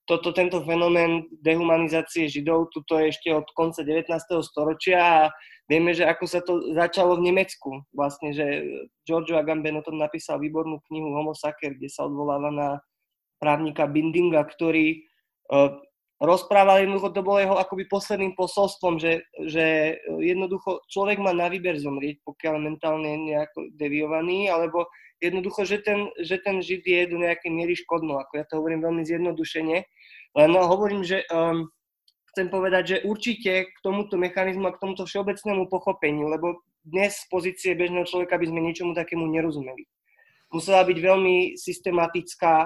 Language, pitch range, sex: Slovak, 160-190 Hz, male